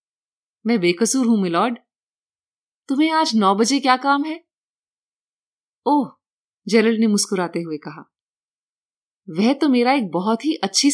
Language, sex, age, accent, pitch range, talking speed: Hindi, female, 30-49, native, 185-265 Hz, 130 wpm